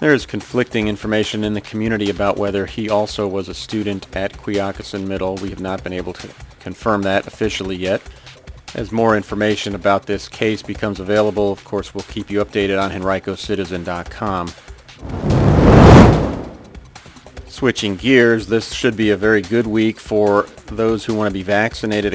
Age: 40-59